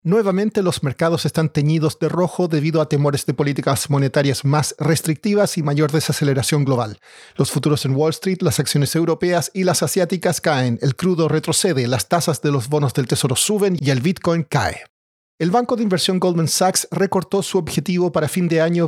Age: 40-59